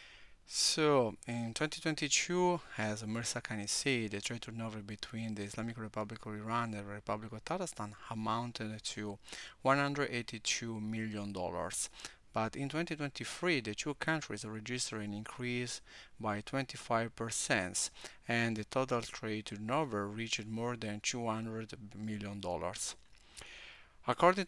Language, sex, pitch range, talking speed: English, male, 105-120 Hz, 115 wpm